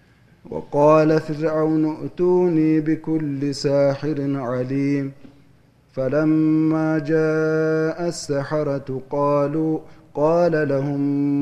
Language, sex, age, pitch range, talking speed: Amharic, male, 30-49, 130-155 Hz, 65 wpm